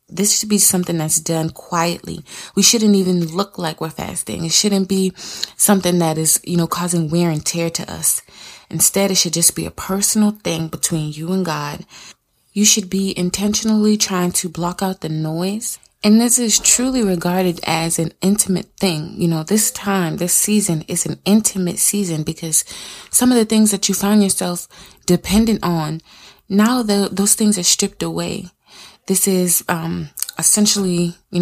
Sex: female